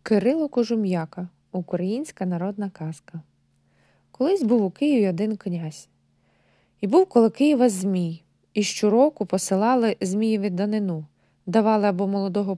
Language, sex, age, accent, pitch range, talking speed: Ukrainian, female, 20-39, native, 170-225 Hz, 115 wpm